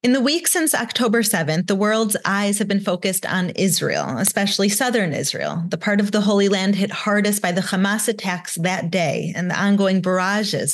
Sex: female